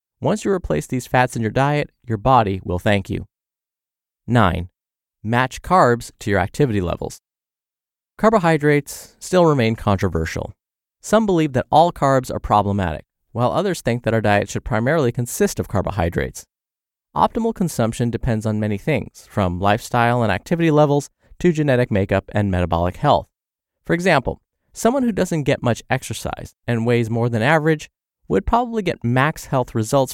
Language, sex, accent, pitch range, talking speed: English, male, American, 105-145 Hz, 155 wpm